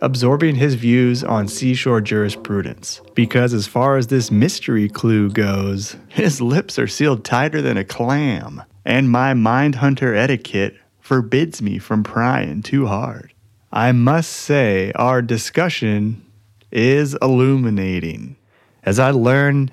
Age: 30-49